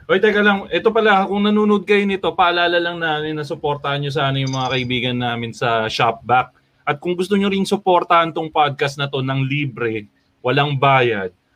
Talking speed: 185 wpm